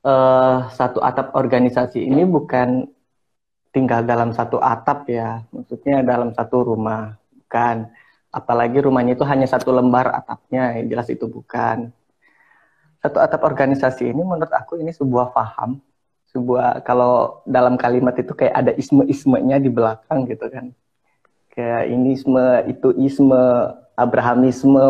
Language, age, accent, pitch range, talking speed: Indonesian, 20-39, native, 125-140 Hz, 130 wpm